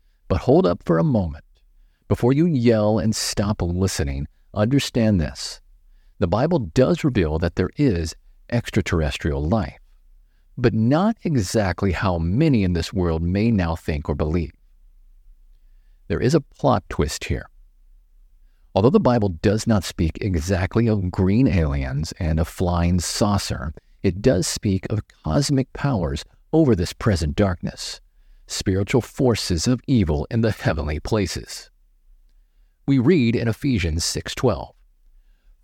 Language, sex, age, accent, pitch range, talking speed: English, male, 50-69, American, 80-115 Hz, 135 wpm